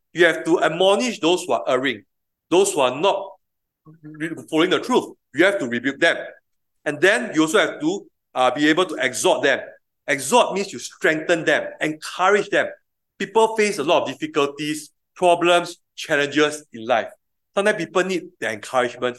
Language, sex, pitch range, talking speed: English, male, 150-225 Hz, 170 wpm